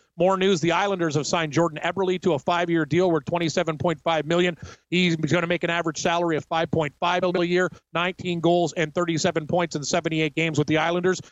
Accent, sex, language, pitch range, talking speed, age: American, male, English, 170-195 Hz, 200 wpm, 40-59